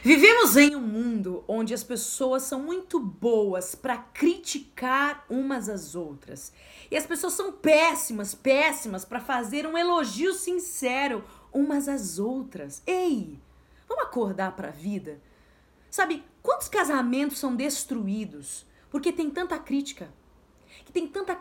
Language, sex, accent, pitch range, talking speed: Portuguese, female, Brazilian, 255-345 Hz, 130 wpm